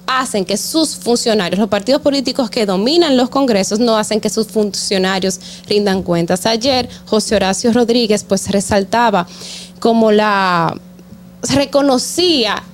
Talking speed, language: 125 wpm, Spanish